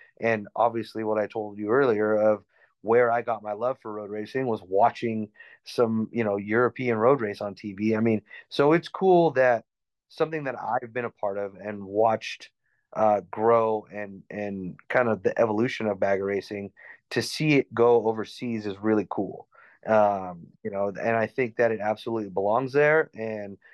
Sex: male